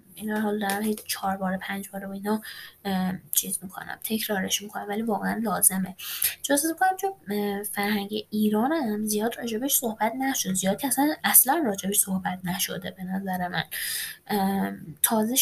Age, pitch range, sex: 10-29, 195-225 Hz, female